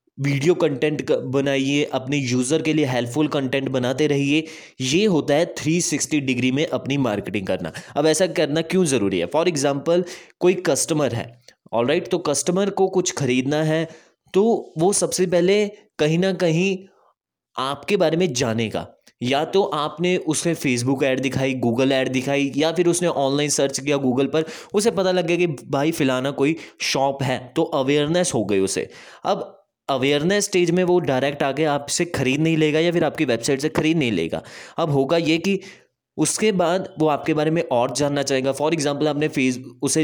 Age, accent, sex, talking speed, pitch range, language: 20-39, native, male, 180 wpm, 130-165 Hz, Hindi